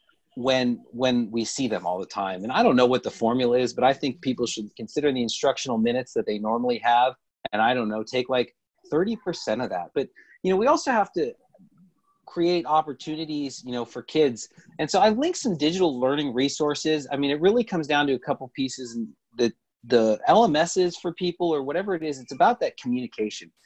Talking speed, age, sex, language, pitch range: 215 wpm, 40-59, male, English, 125-175 Hz